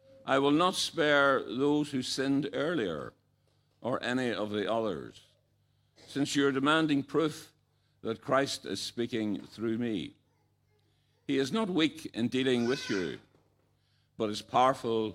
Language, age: English, 60-79